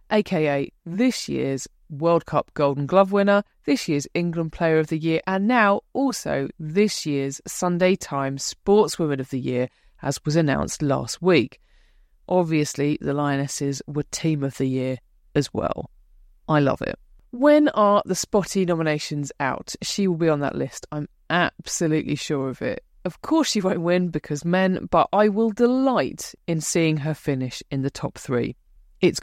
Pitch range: 145-200 Hz